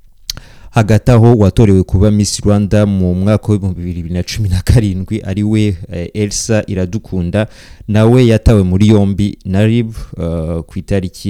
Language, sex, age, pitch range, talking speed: English, male, 30-49, 90-110 Hz, 110 wpm